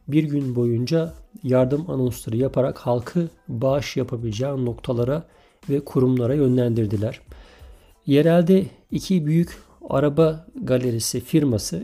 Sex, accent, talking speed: male, native, 95 wpm